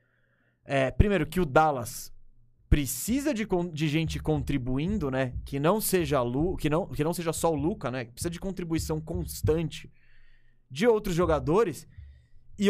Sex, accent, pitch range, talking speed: male, Brazilian, 140-200 Hz, 160 wpm